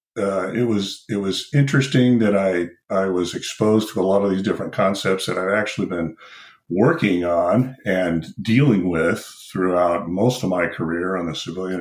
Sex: male